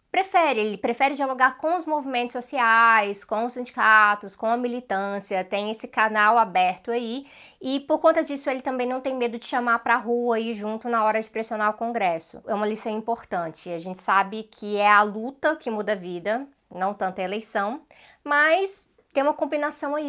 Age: 20-39